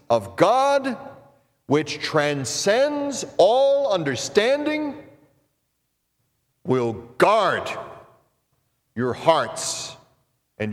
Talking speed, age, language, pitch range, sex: 60 wpm, 40-59, English, 120-170 Hz, male